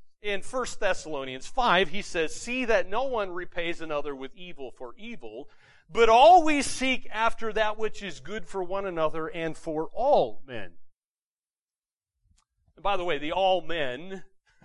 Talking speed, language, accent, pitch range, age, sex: 155 wpm, English, American, 130-200 Hz, 40-59, male